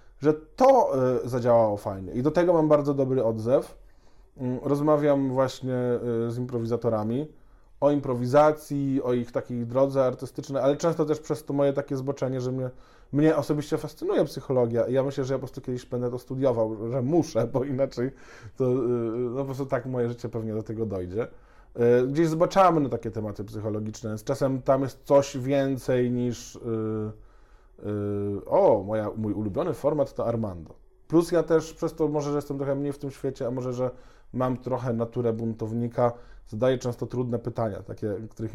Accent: native